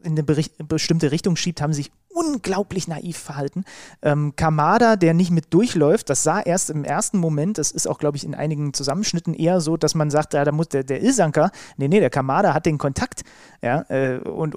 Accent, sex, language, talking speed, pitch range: German, male, German, 215 wpm, 150-180 Hz